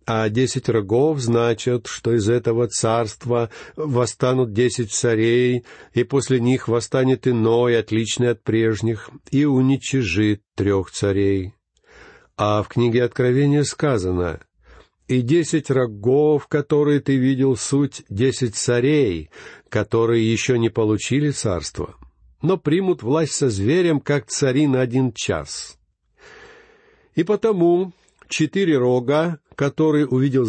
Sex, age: male, 50-69